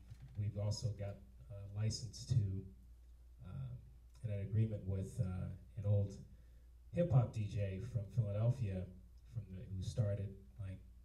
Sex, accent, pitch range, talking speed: male, American, 95-115 Hz, 135 wpm